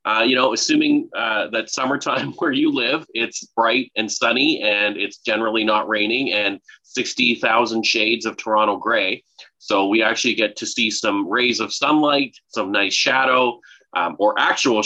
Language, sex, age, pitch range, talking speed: English, male, 30-49, 110-140 Hz, 165 wpm